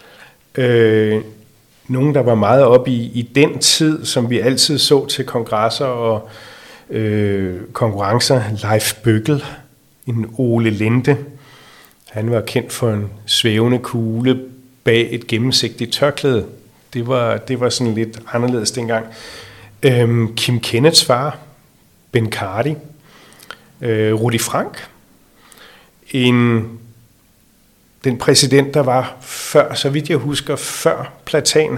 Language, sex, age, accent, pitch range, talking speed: Danish, male, 40-59, native, 115-140 Hz, 120 wpm